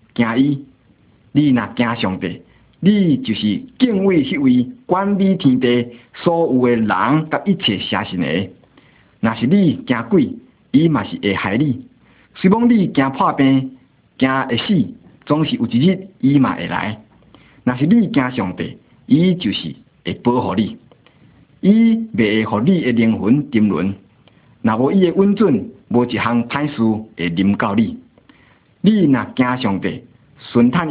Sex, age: male, 50-69